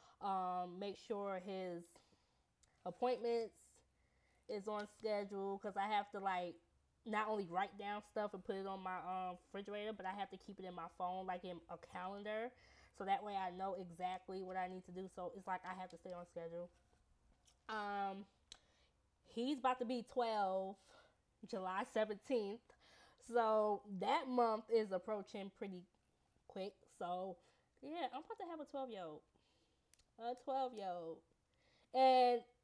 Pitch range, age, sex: 185-245 Hz, 20-39, female